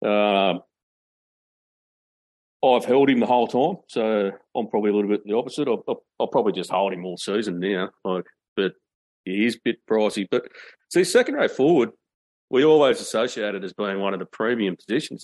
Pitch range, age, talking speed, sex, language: 95-110 Hz, 40-59, 190 wpm, male, English